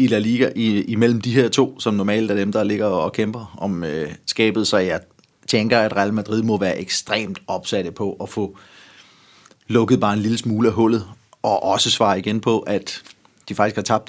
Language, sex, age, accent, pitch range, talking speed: Danish, male, 30-49, native, 110-140 Hz, 215 wpm